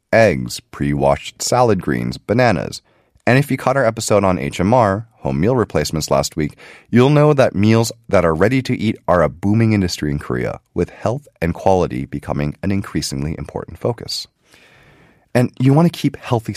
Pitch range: 75-120 Hz